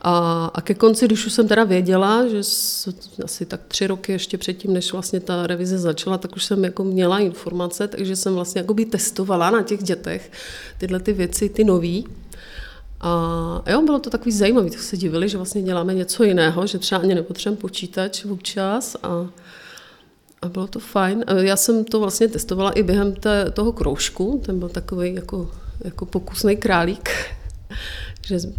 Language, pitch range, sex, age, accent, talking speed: Czech, 175-200 Hz, female, 30-49, native, 180 wpm